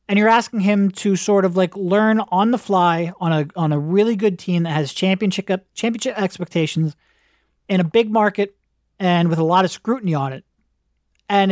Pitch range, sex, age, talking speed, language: 170-200 Hz, male, 30-49, 195 wpm, English